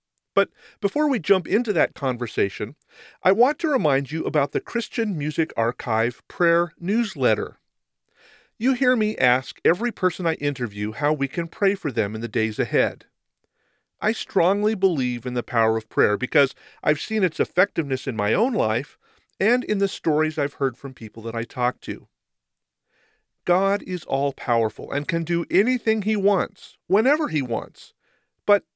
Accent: American